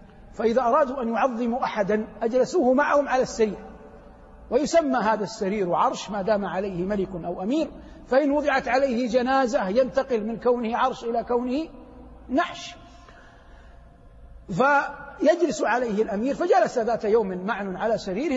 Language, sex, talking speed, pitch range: Arabic, male, 125 wpm, 195-255 Hz